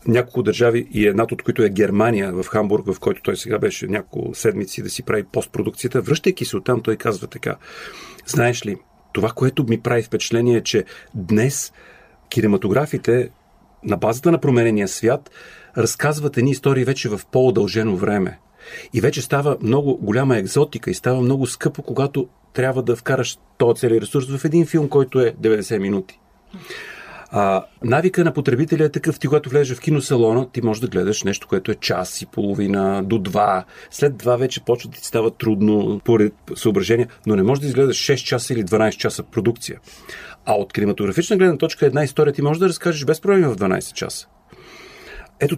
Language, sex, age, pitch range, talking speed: Bulgarian, male, 40-59, 115-145 Hz, 180 wpm